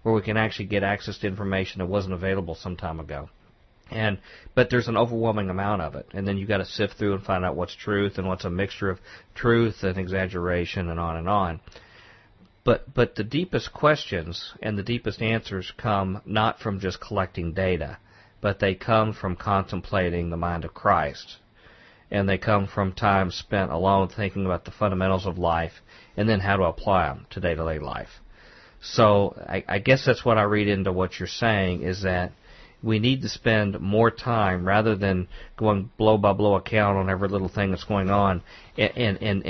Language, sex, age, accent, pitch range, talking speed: English, male, 50-69, American, 95-110 Hz, 195 wpm